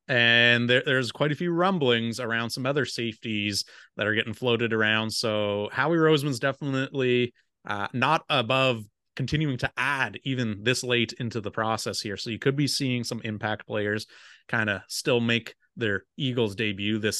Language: English